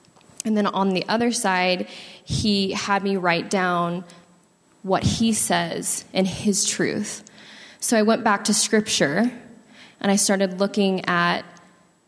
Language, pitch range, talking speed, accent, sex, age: English, 180-210 Hz, 140 wpm, American, female, 20-39